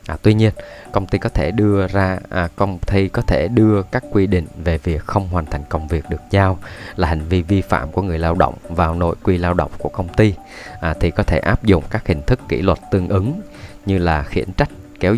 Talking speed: 245 wpm